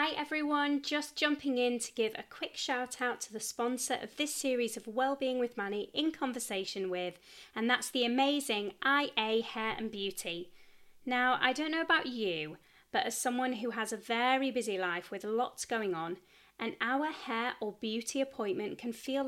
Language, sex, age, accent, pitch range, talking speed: English, female, 30-49, British, 205-270 Hz, 185 wpm